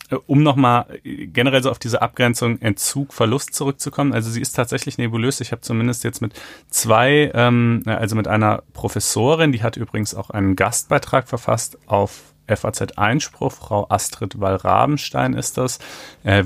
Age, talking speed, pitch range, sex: 40-59, 155 wpm, 100-120 Hz, male